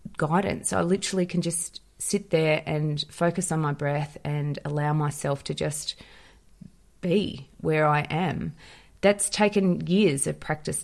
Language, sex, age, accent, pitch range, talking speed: English, female, 30-49, Australian, 150-175 Hz, 145 wpm